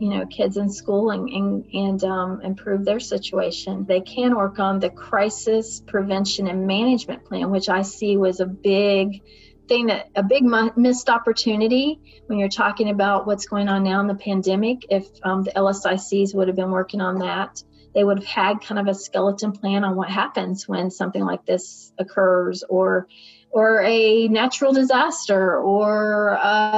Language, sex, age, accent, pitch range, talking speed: English, female, 40-59, American, 190-225 Hz, 175 wpm